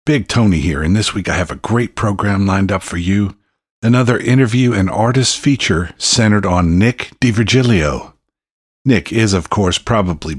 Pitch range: 90-115 Hz